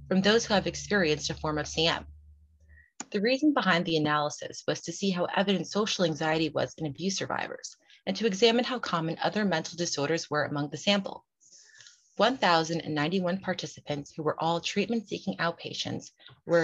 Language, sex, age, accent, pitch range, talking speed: English, female, 30-49, American, 150-195 Hz, 165 wpm